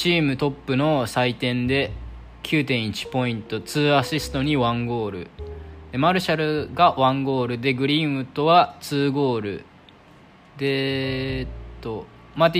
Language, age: Japanese, 20-39